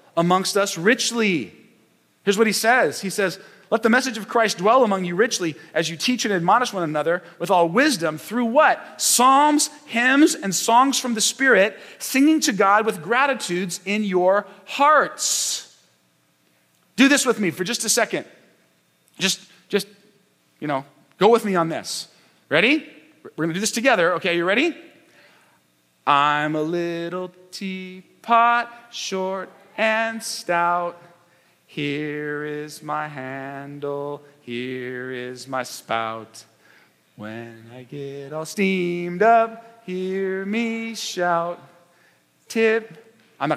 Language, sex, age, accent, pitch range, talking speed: English, male, 30-49, American, 140-225 Hz, 135 wpm